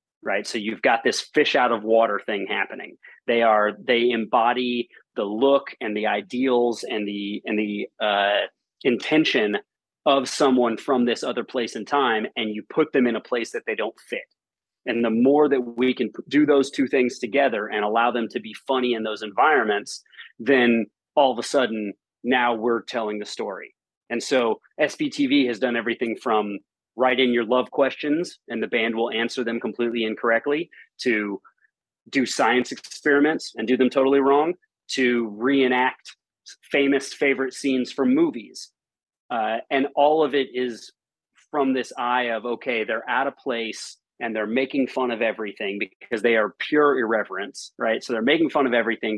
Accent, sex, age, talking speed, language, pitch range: American, male, 30-49, 175 wpm, English, 115-140 Hz